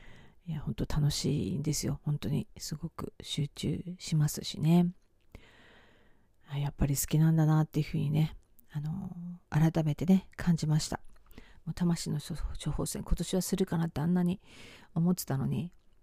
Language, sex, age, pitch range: Japanese, female, 40-59, 150-190 Hz